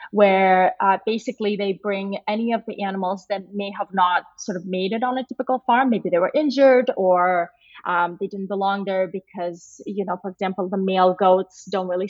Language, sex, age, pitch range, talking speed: English, female, 20-39, 185-225 Hz, 205 wpm